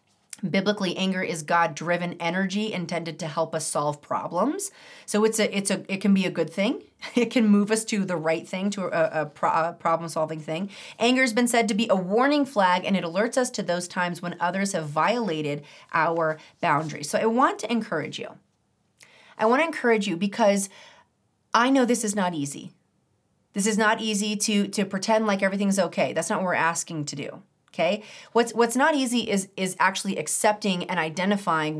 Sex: female